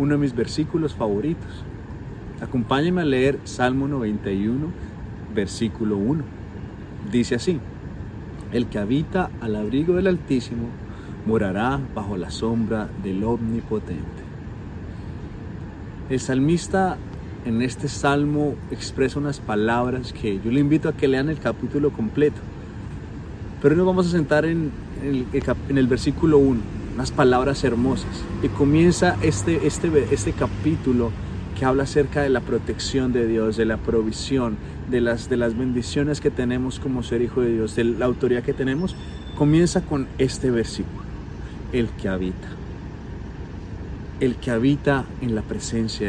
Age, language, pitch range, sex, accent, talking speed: 30-49, Spanish, 105-140 Hz, male, Colombian, 135 wpm